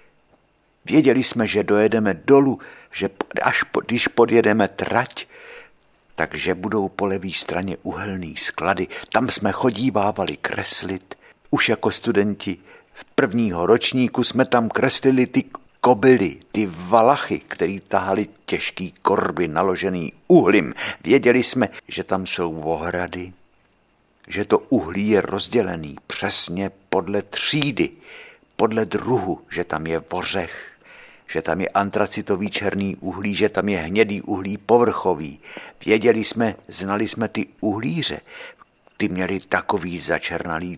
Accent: native